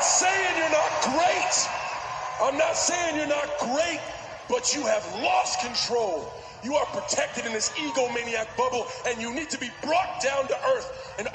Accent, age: American, 30-49